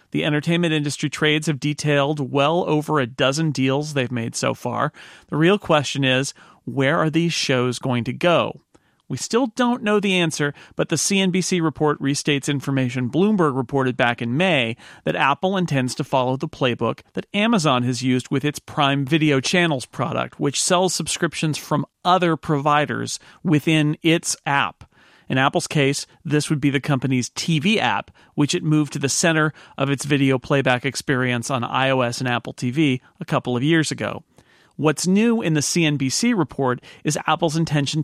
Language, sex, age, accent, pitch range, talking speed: English, male, 40-59, American, 130-165 Hz, 170 wpm